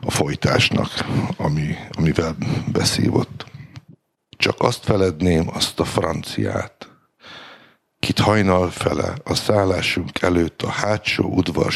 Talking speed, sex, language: 100 wpm, male, Hungarian